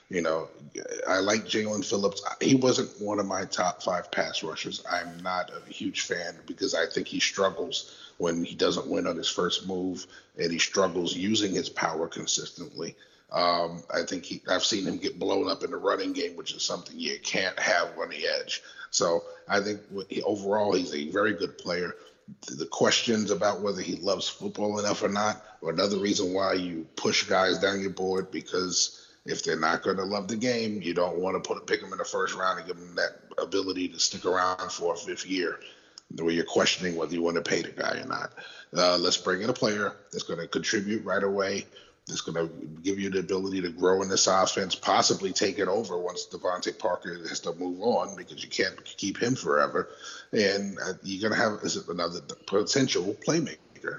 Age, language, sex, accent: 30-49, English, male, American